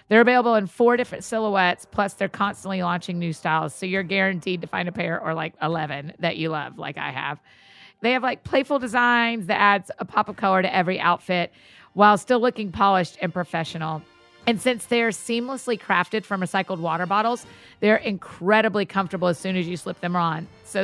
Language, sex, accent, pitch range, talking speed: English, female, American, 175-210 Hz, 195 wpm